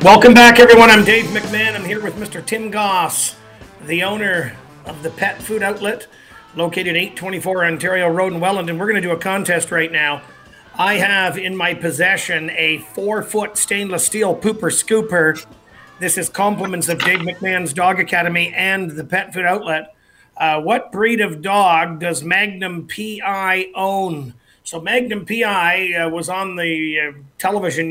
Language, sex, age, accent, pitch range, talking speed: English, male, 50-69, American, 165-210 Hz, 165 wpm